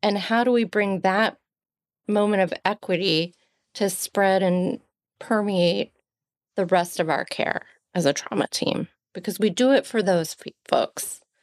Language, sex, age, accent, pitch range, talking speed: English, female, 30-49, American, 180-220 Hz, 150 wpm